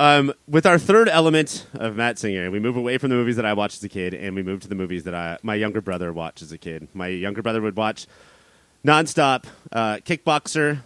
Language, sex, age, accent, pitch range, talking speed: English, male, 30-49, American, 105-150 Hz, 240 wpm